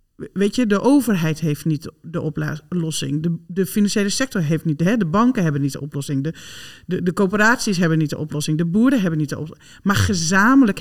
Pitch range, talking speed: 155-225 Hz, 205 wpm